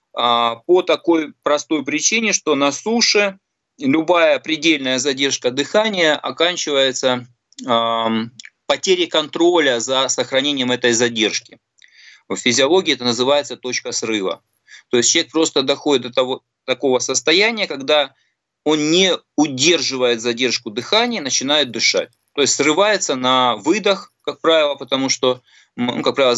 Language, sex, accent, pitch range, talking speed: Russian, male, native, 125-180 Hz, 125 wpm